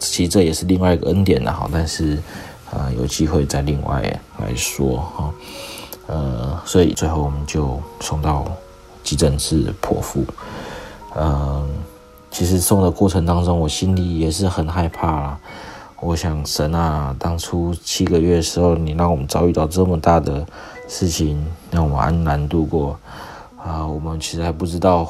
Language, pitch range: Chinese, 80-95 Hz